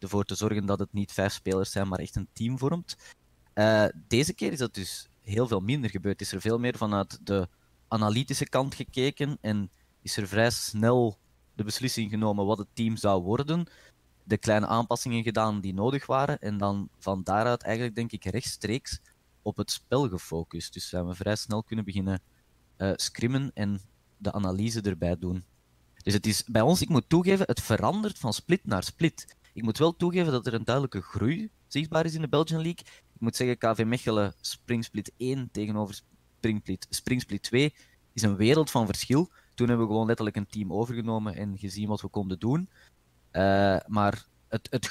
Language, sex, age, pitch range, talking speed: Dutch, male, 20-39, 100-120 Hz, 190 wpm